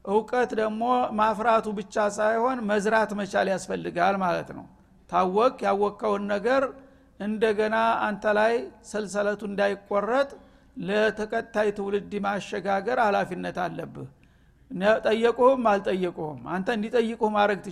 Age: 60-79